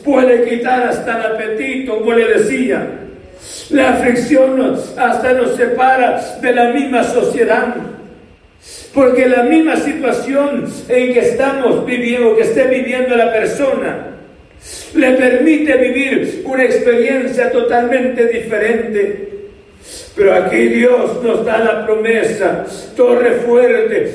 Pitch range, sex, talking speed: 230-275 Hz, male, 115 wpm